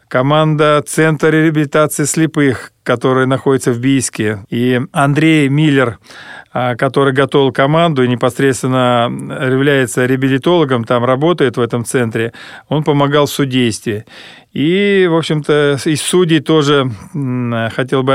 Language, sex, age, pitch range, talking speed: Russian, male, 40-59, 125-150 Hz, 115 wpm